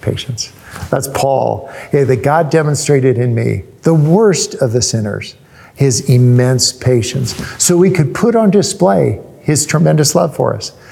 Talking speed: 150 wpm